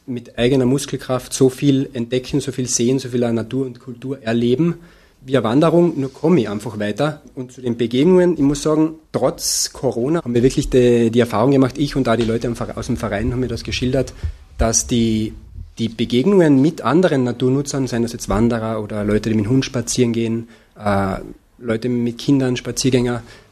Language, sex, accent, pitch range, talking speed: German, male, German, 115-135 Hz, 185 wpm